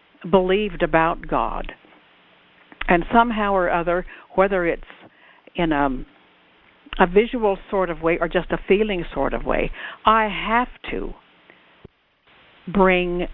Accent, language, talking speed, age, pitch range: American, English, 120 wpm, 60-79, 160-205 Hz